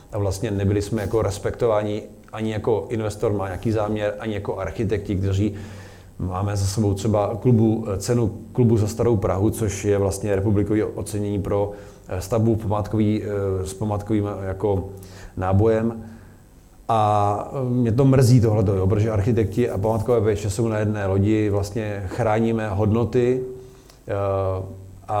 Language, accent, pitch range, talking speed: Czech, native, 100-115 Hz, 135 wpm